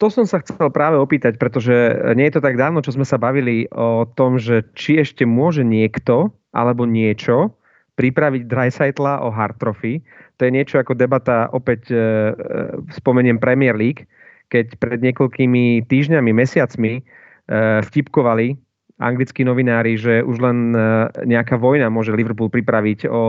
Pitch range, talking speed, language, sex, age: 110-130 Hz, 145 wpm, Slovak, male, 30-49